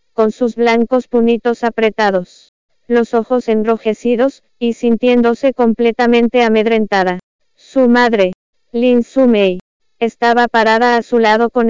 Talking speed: 115 wpm